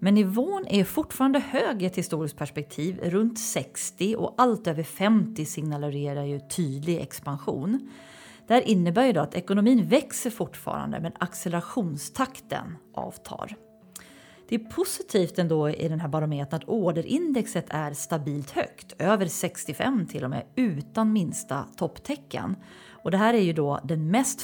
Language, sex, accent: Swedish, female, native